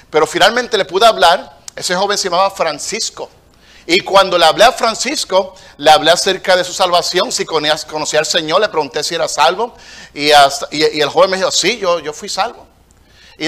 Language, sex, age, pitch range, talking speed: Spanish, male, 50-69, 155-205 Hz, 195 wpm